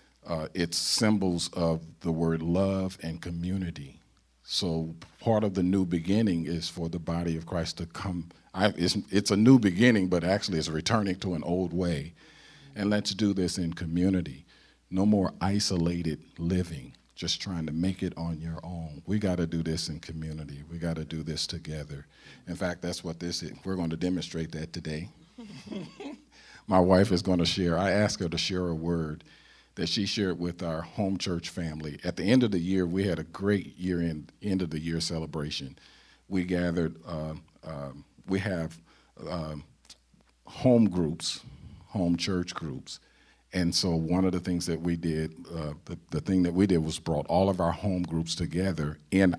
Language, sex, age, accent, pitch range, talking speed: English, male, 50-69, American, 80-95 Hz, 180 wpm